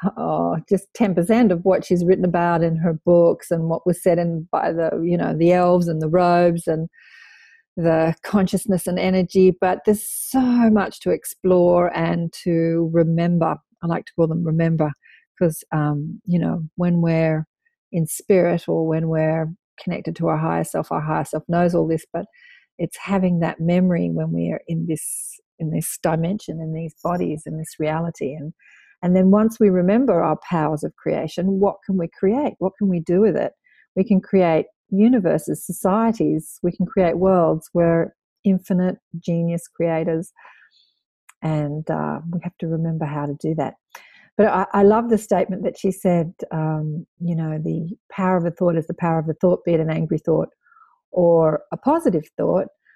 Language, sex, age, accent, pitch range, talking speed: English, female, 40-59, Australian, 160-195 Hz, 185 wpm